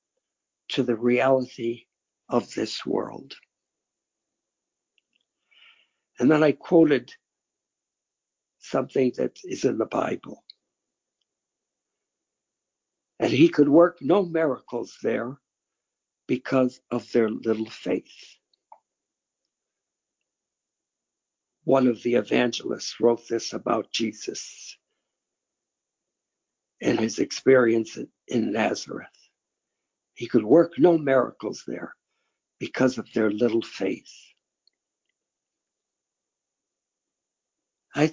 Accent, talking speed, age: American, 85 wpm, 60-79